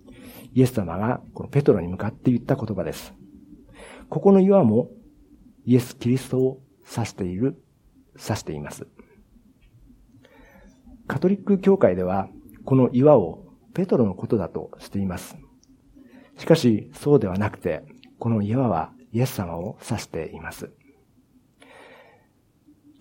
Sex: male